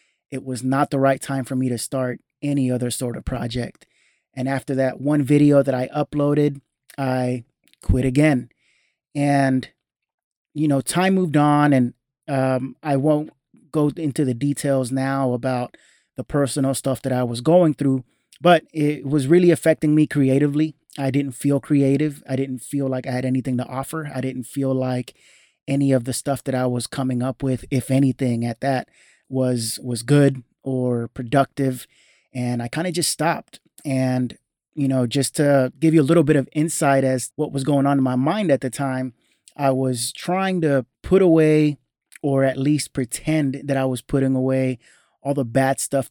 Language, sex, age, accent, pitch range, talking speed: English, male, 30-49, American, 130-145 Hz, 185 wpm